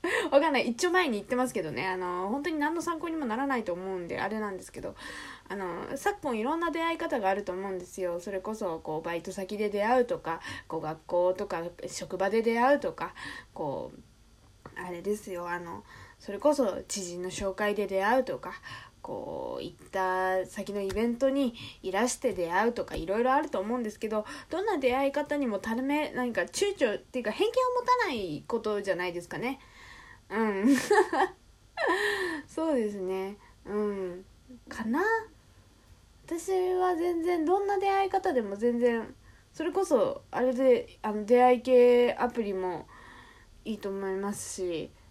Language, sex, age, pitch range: Japanese, female, 20-39, 190-280 Hz